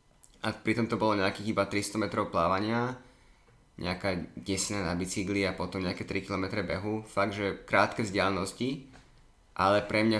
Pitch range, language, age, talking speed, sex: 100-130 Hz, Slovak, 20-39, 155 wpm, male